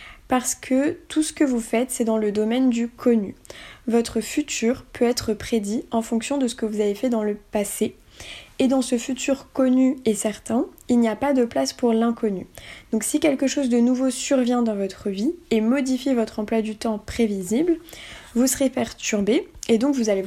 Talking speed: 200 wpm